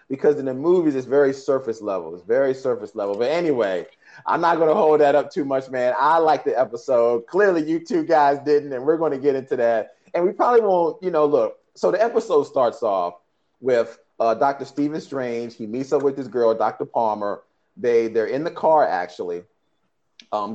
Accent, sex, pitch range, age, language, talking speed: American, male, 115-160 Hz, 30-49, English, 205 wpm